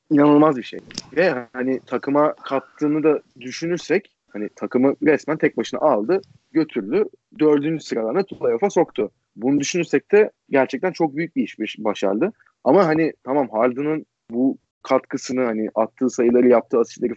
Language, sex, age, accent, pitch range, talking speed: Turkish, male, 30-49, native, 120-150 Hz, 145 wpm